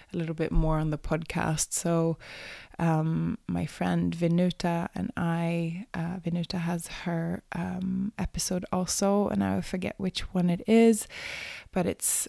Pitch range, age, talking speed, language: 155-180 Hz, 20-39, 145 wpm, English